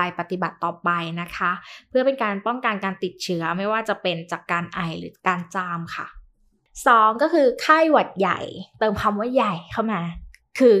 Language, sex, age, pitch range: Thai, female, 20-39, 190-260 Hz